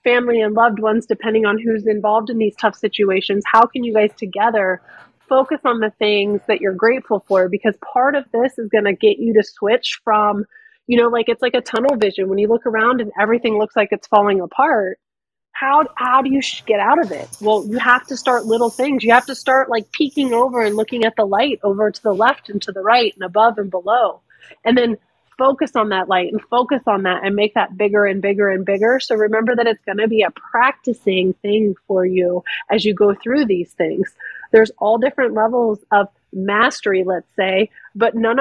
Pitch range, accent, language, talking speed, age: 205-250 Hz, American, English, 220 wpm, 30-49